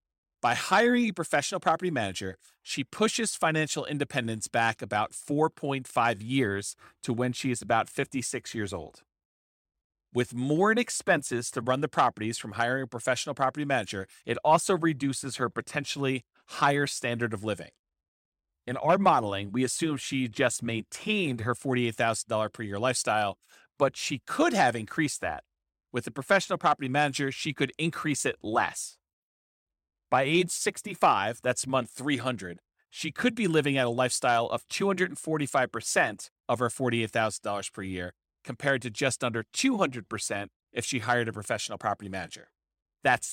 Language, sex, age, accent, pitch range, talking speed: English, male, 40-59, American, 110-145 Hz, 150 wpm